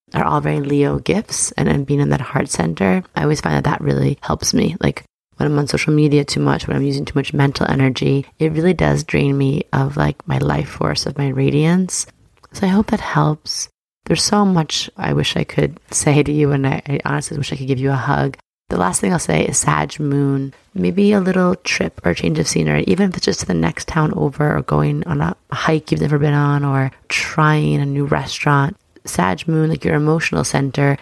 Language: English